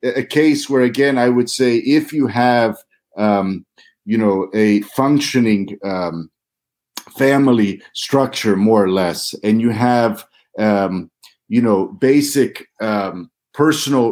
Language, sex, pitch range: English, male, 115-140 Hz